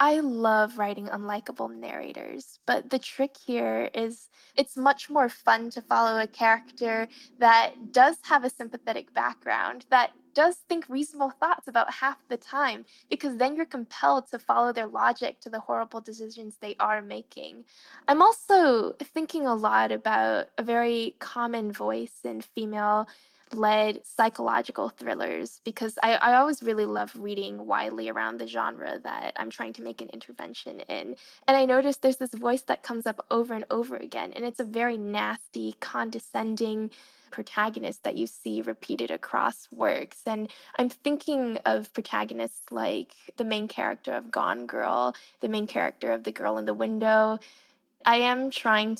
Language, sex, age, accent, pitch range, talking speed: English, female, 10-29, American, 210-260 Hz, 160 wpm